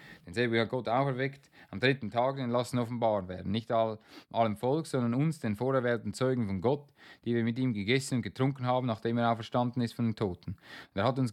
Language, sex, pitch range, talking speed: German, male, 110-135 Hz, 215 wpm